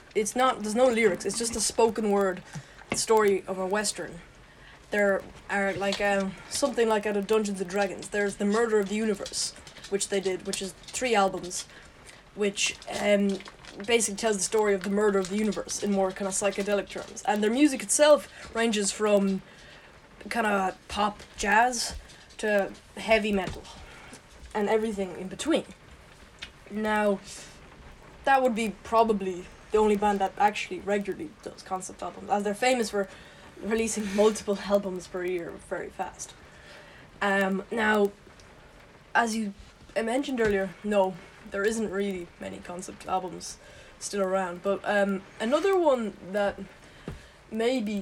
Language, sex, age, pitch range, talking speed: English, female, 20-39, 190-215 Hz, 150 wpm